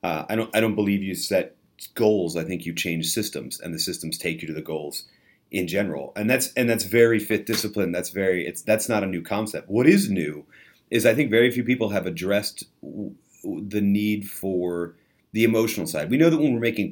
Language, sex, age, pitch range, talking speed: English, male, 30-49, 85-110 Hz, 225 wpm